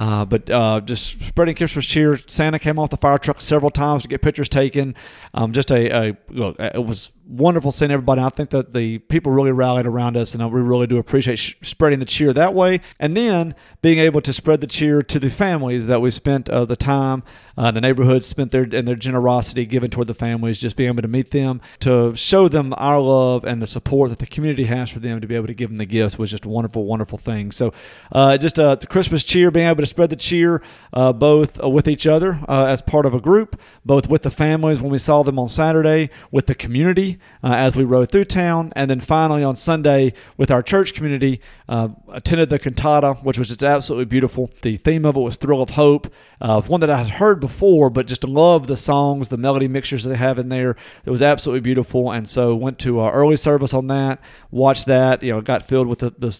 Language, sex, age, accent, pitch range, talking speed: English, male, 40-59, American, 120-150 Hz, 240 wpm